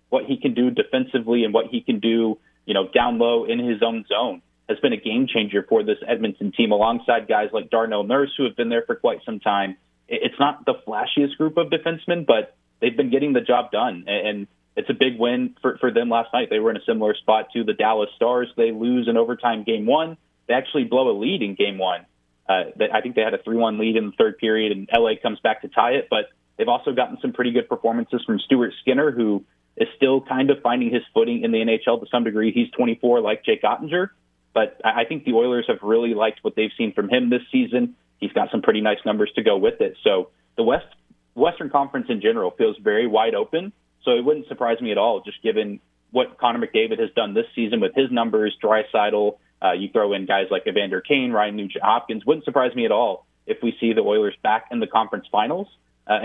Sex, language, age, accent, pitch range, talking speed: male, English, 30-49, American, 110-145 Hz, 235 wpm